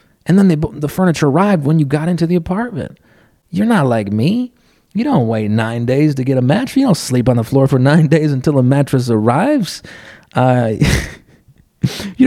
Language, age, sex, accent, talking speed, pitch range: English, 30-49, male, American, 195 wpm, 110-150 Hz